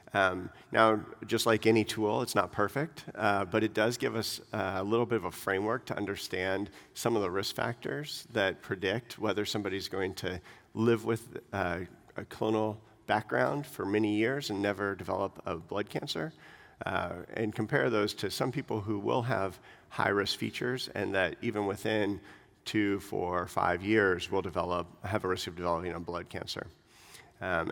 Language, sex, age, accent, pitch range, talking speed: English, male, 40-59, American, 95-110 Hz, 175 wpm